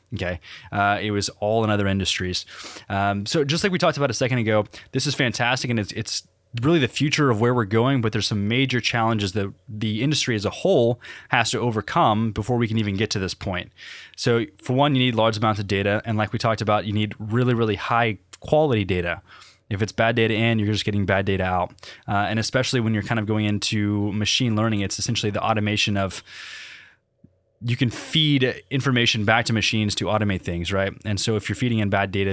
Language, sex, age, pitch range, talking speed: English, male, 20-39, 100-120 Hz, 225 wpm